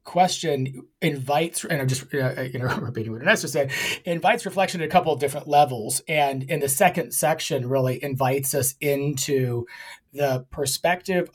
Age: 30-49